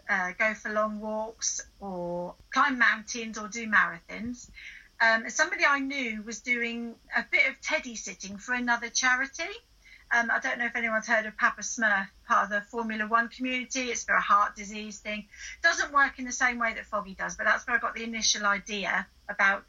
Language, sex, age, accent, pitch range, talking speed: English, female, 50-69, British, 215-265 Hz, 200 wpm